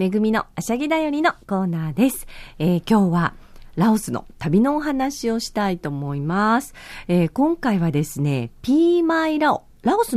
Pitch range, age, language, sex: 160-255 Hz, 40-59, Japanese, female